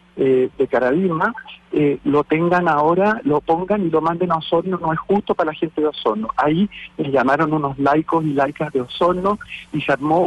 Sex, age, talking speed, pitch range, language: male, 50-69, 195 wpm, 150-180 Hz, Spanish